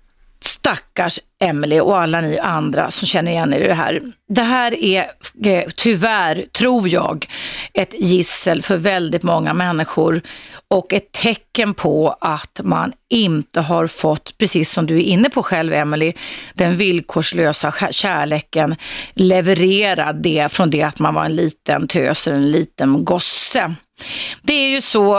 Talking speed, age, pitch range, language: 150 wpm, 30-49, 165-210 Hz, Swedish